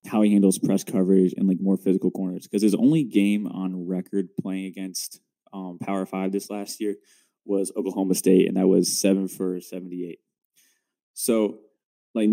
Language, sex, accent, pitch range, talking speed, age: English, male, American, 95-105 Hz, 170 wpm, 20-39